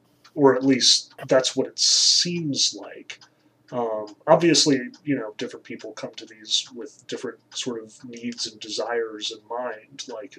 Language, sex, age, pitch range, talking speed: English, male, 20-39, 115-145 Hz, 155 wpm